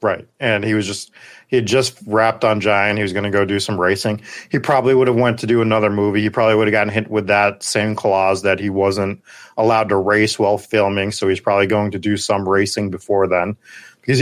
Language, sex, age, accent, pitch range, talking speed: English, male, 30-49, American, 100-120 Hz, 240 wpm